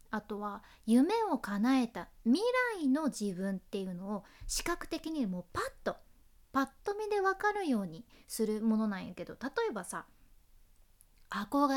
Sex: female